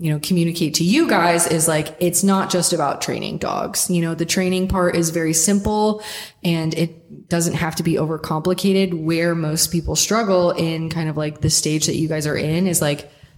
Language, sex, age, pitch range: English, female, 20-39, 160-190 Hz